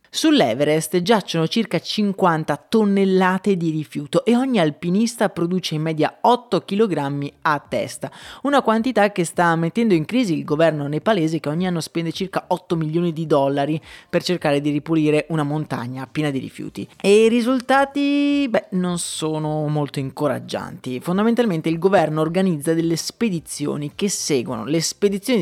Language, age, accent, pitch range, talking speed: Italian, 30-49, native, 150-200 Hz, 150 wpm